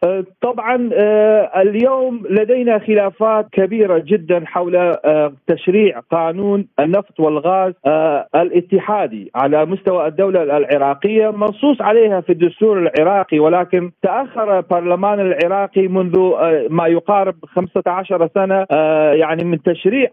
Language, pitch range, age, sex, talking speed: Arabic, 170-210 Hz, 40-59, male, 100 wpm